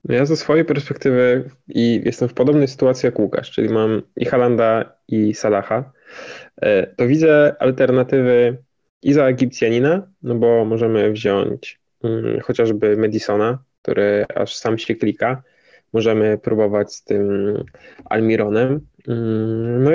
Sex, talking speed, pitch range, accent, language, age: male, 120 wpm, 110-140 Hz, native, Polish, 10-29